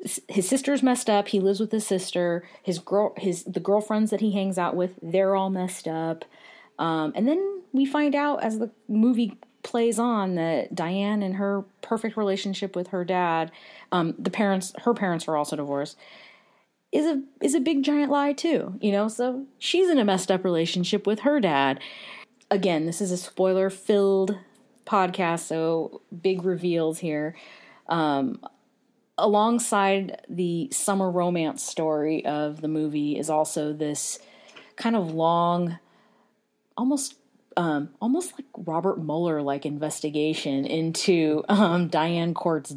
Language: English